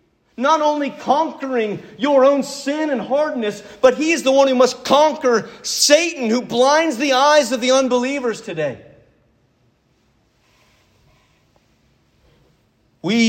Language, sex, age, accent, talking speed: English, male, 40-59, American, 115 wpm